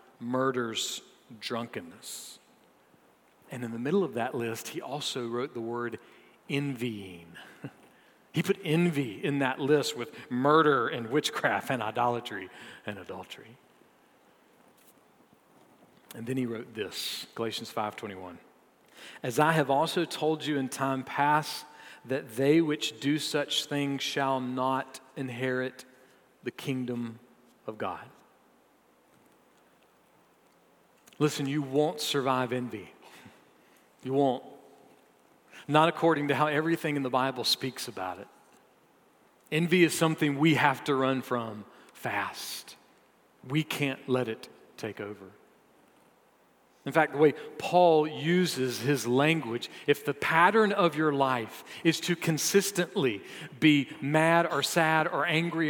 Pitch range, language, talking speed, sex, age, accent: 125-155 Hz, English, 125 wpm, male, 40-59, American